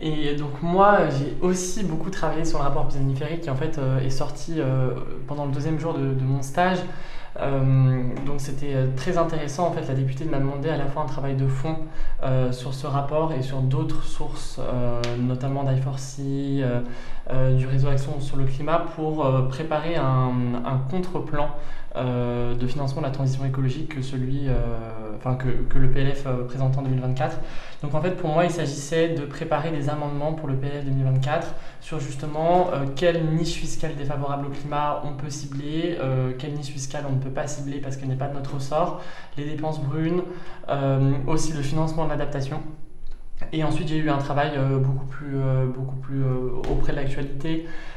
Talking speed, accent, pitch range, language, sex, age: 190 wpm, French, 130-150 Hz, French, male, 20-39